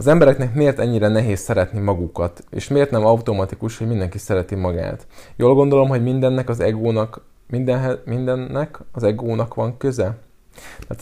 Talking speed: 150 wpm